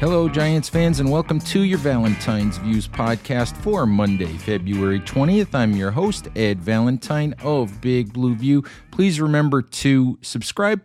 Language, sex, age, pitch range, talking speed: English, male, 50-69, 115-145 Hz, 150 wpm